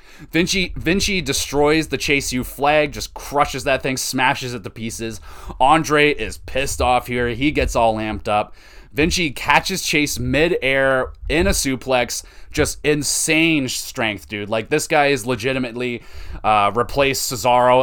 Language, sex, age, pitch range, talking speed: English, male, 20-39, 110-145 Hz, 150 wpm